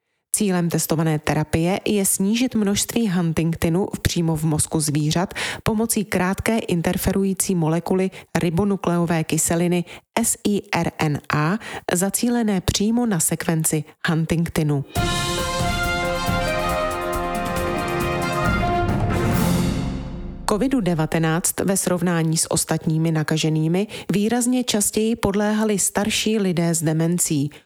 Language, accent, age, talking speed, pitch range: Czech, native, 30-49, 80 wpm, 160-200 Hz